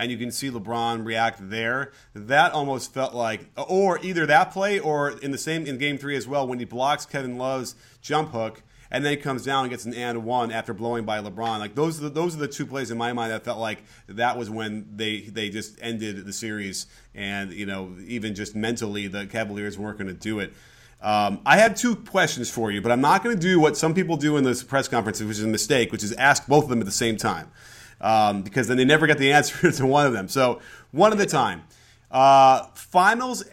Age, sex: 30-49, male